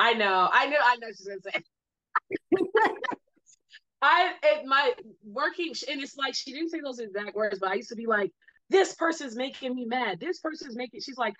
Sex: female